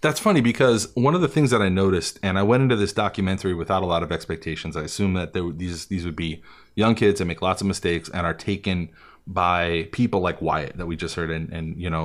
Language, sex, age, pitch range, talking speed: English, male, 30-49, 90-120 Hz, 260 wpm